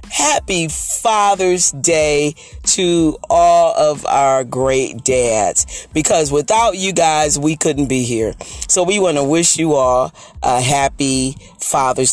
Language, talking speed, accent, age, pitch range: English, 135 wpm, American, 40-59, 130-180 Hz